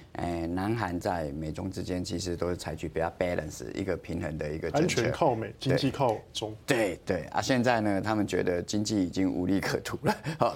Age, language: 20-39, Chinese